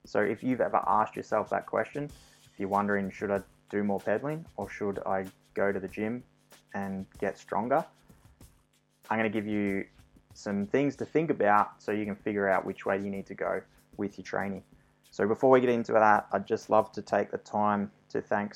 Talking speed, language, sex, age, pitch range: 210 wpm, English, male, 20-39, 100-110 Hz